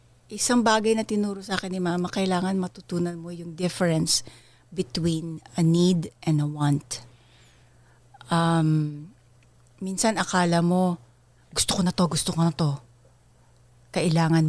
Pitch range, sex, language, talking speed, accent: 120-185 Hz, female, English, 130 wpm, Filipino